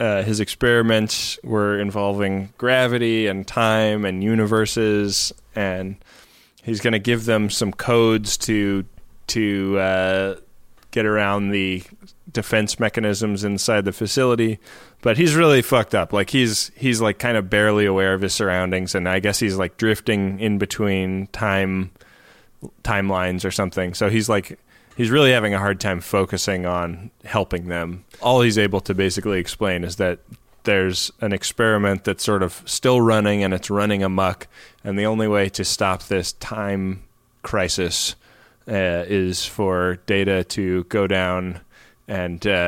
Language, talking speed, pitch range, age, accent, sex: English, 150 wpm, 95-110 Hz, 20-39, American, male